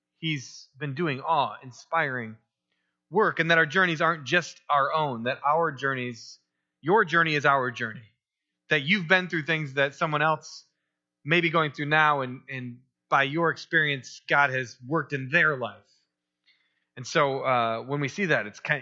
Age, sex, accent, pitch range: 30-49, male, American, 130-170 Hz